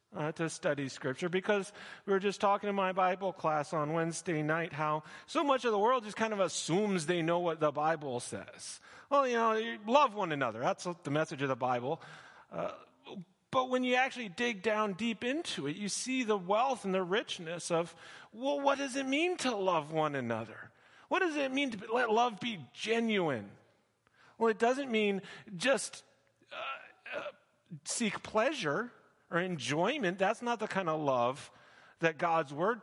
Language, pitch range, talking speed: English, 155-225 Hz, 185 wpm